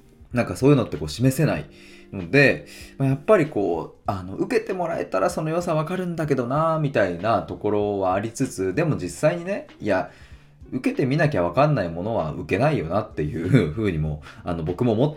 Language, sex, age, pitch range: Japanese, male, 20-39, 90-145 Hz